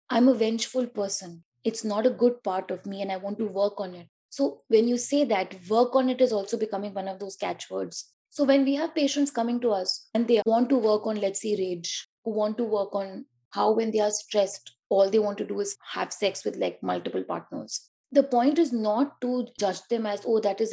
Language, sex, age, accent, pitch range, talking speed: English, female, 20-39, Indian, 200-255 Hz, 240 wpm